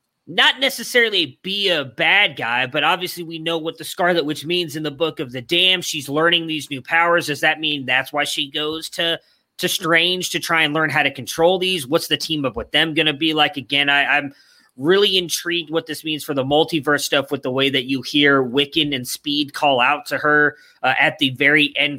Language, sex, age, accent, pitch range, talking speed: English, male, 30-49, American, 140-170 Hz, 230 wpm